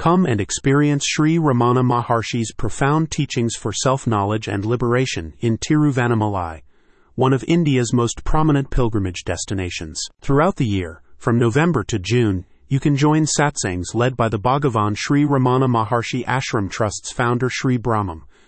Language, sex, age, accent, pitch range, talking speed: English, male, 40-59, American, 105-140 Hz, 145 wpm